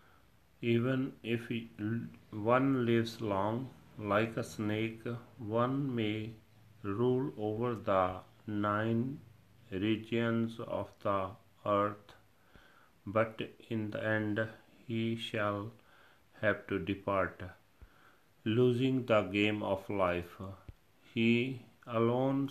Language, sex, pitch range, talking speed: Punjabi, male, 100-115 Hz, 90 wpm